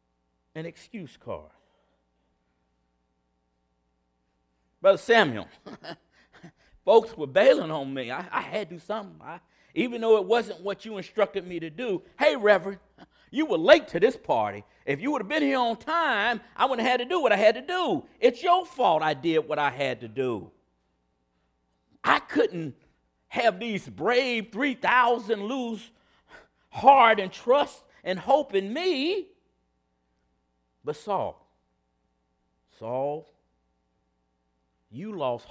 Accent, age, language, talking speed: American, 50-69, English, 140 wpm